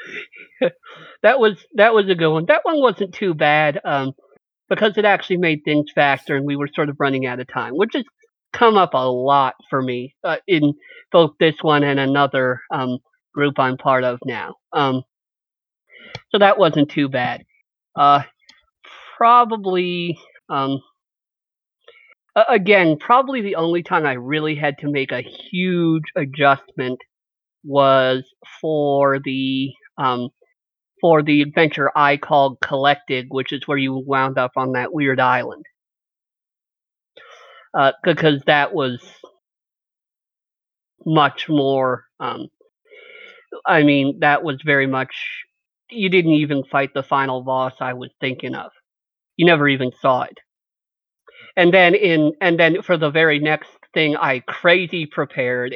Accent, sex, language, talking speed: American, male, English, 145 wpm